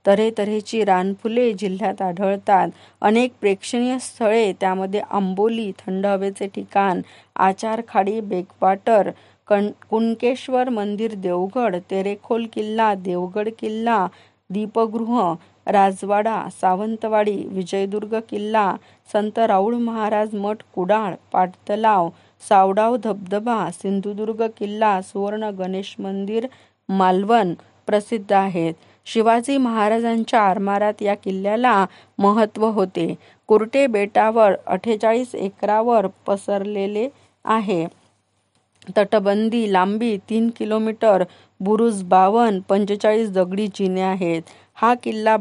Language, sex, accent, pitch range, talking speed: Marathi, female, native, 195-225 Hz, 85 wpm